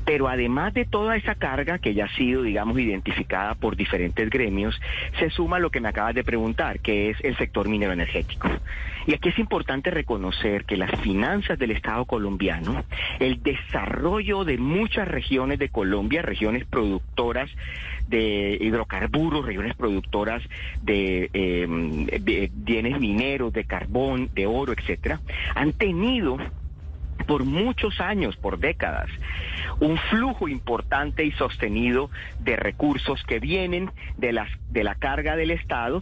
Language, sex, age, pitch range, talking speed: Spanish, male, 40-59, 90-140 Hz, 145 wpm